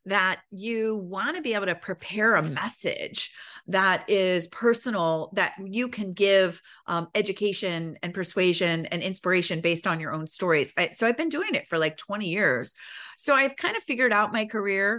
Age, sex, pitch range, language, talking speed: 30-49, female, 175-210 Hz, English, 185 wpm